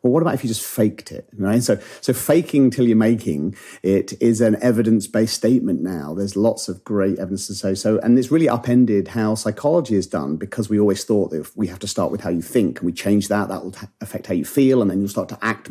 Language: English